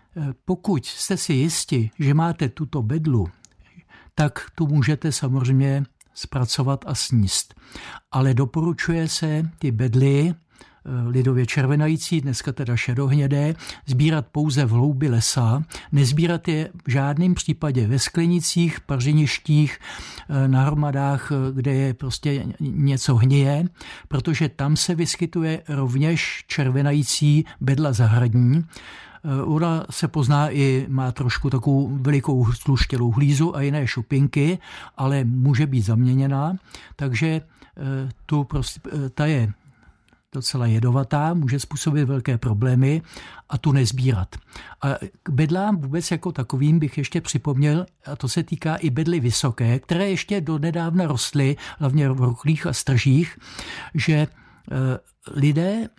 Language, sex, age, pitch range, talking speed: Czech, male, 60-79, 130-160 Hz, 120 wpm